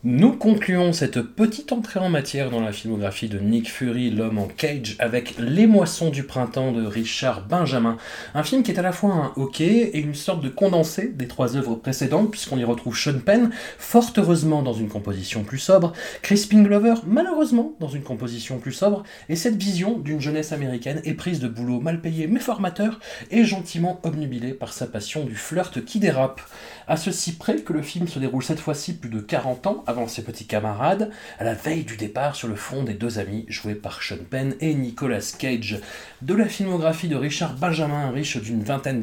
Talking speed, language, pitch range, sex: 200 wpm, French, 120-185 Hz, male